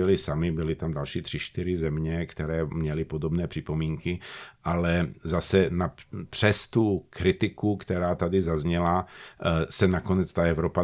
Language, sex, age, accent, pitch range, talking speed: Czech, male, 50-69, native, 80-90 Hz, 120 wpm